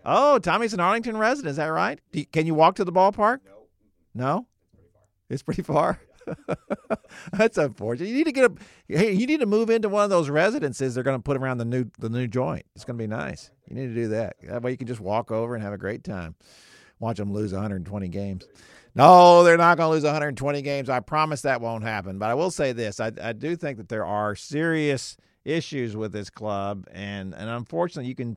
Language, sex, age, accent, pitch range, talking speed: English, male, 50-69, American, 105-145 Hz, 230 wpm